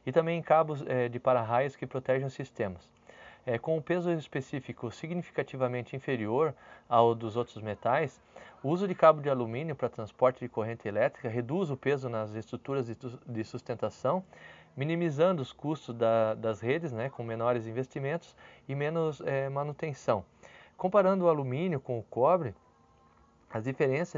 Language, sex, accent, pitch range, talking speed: Portuguese, male, Brazilian, 120-155 Hz, 140 wpm